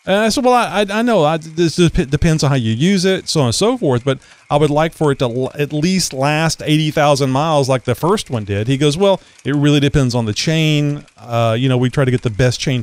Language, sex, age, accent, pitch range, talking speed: English, male, 40-59, American, 120-165 Hz, 265 wpm